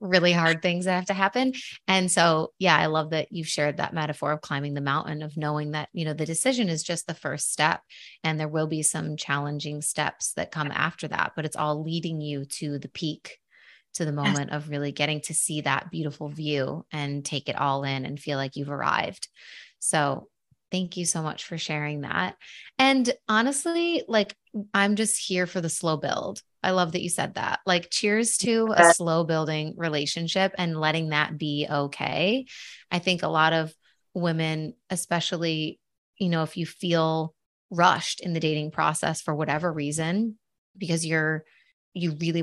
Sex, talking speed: female, 190 wpm